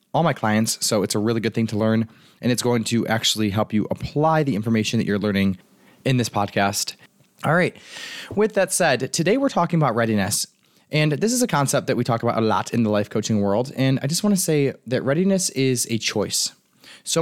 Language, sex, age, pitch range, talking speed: English, male, 20-39, 110-135 Hz, 225 wpm